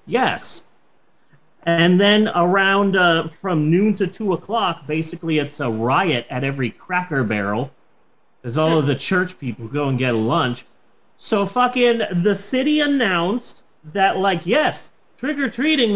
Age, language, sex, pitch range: 30-49, English, male, 170-245 Hz